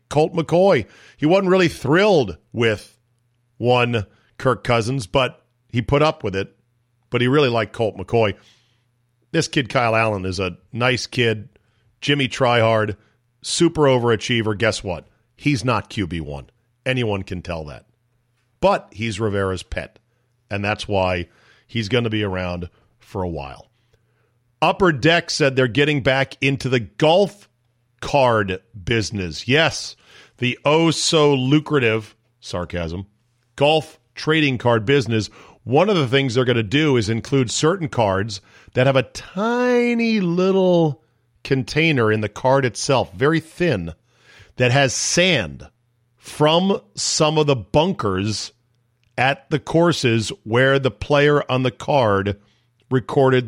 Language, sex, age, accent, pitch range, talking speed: English, male, 40-59, American, 110-140 Hz, 135 wpm